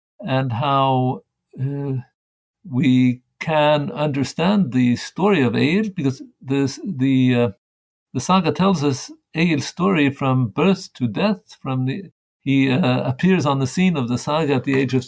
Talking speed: 155 wpm